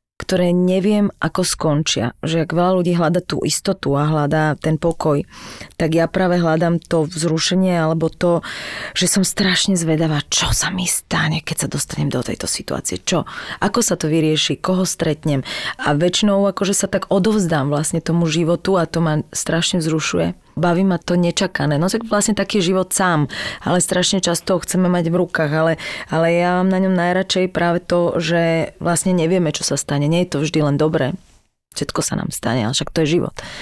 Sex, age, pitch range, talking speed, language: female, 30-49, 160-185 Hz, 190 wpm, Slovak